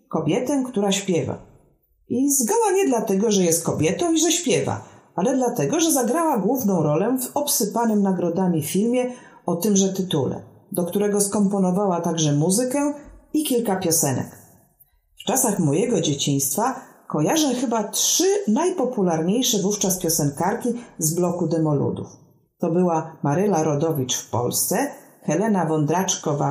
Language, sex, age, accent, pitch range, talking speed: Polish, female, 40-59, native, 160-240 Hz, 125 wpm